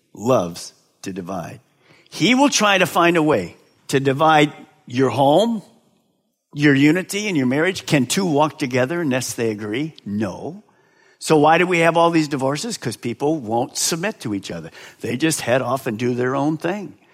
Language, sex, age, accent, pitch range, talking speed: English, male, 50-69, American, 145-205 Hz, 180 wpm